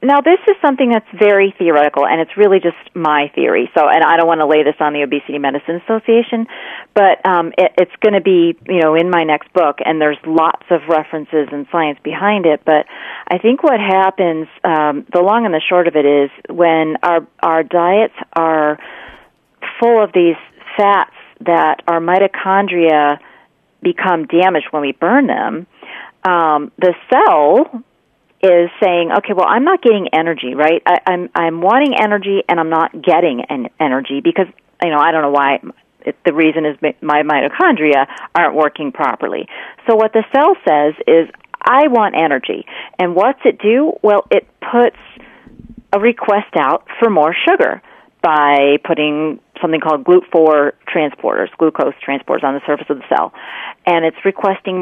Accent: American